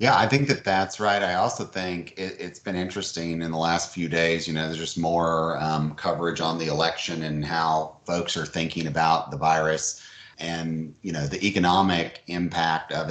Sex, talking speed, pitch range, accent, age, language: male, 195 wpm, 80-90 Hz, American, 30-49, English